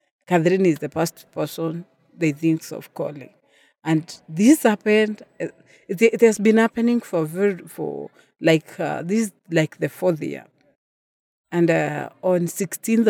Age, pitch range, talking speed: 50-69, 160-195 Hz, 135 wpm